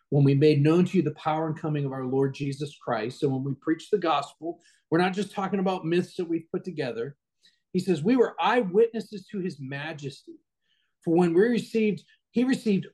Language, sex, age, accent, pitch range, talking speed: English, male, 40-59, American, 145-180 Hz, 215 wpm